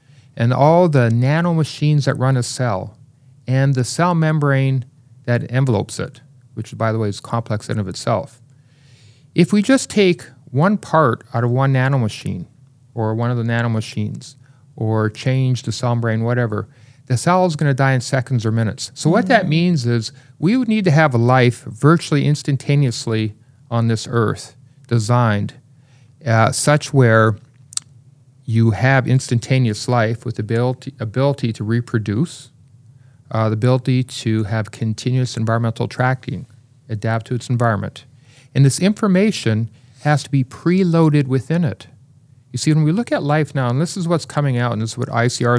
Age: 40-59